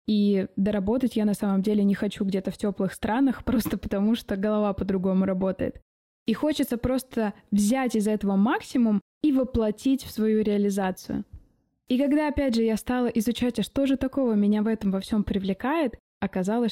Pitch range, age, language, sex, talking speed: 200-240 Hz, 20-39, Russian, female, 170 wpm